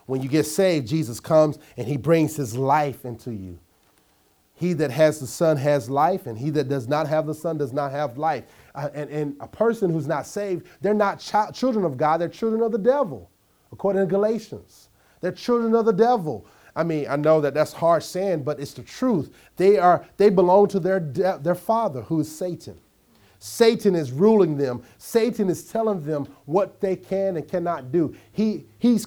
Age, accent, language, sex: 30-49, American, English, male